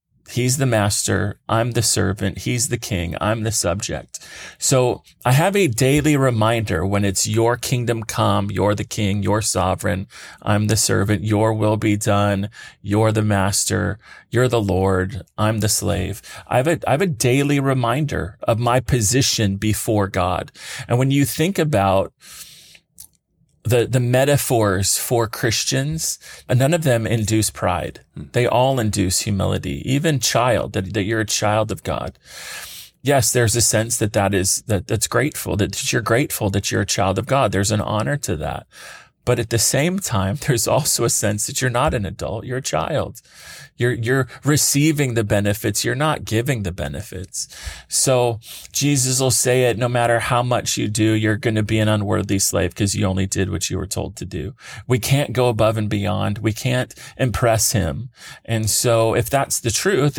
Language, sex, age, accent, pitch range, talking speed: English, male, 30-49, American, 100-125 Hz, 180 wpm